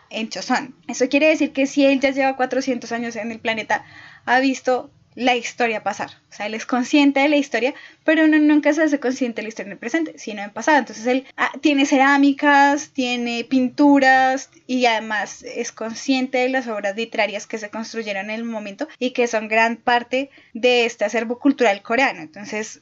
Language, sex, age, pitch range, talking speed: Spanish, female, 10-29, 235-285 Hz, 195 wpm